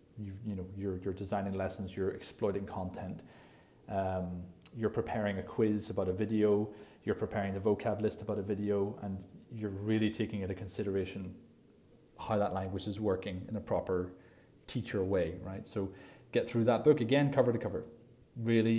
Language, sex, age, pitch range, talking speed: English, male, 30-49, 95-115 Hz, 170 wpm